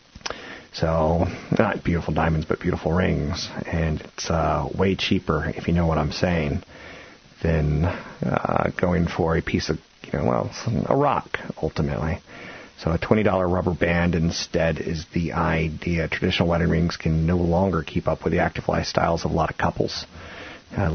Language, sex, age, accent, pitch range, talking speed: English, male, 40-59, American, 80-95 Hz, 170 wpm